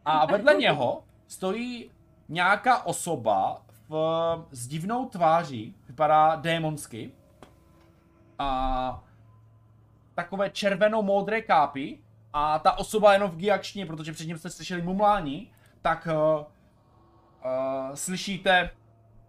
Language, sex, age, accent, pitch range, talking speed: Czech, male, 20-39, native, 140-225 Hz, 100 wpm